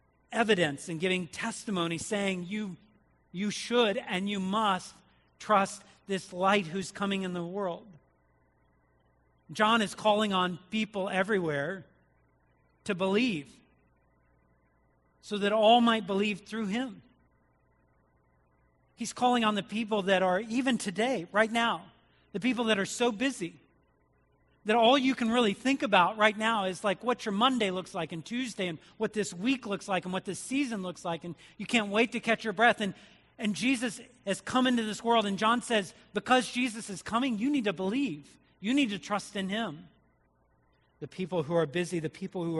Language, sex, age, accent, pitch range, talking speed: English, male, 40-59, American, 150-215 Hz, 170 wpm